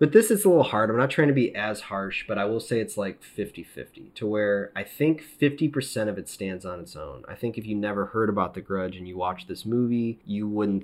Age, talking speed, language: 30-49, 260 wpm, English